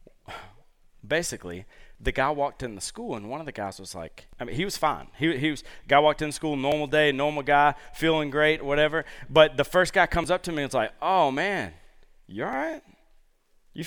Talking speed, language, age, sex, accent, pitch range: 210 wpm, English, 30-49, male, American, 135-180 Hz